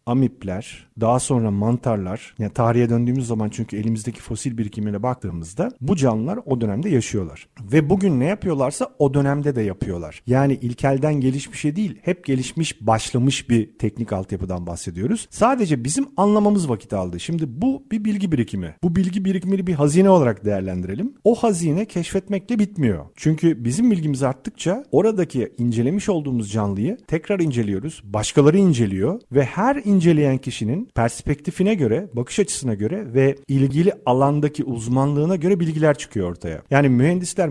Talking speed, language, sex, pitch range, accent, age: 140 wpm, Turkish, male, 115-160 Hz, native, 40-59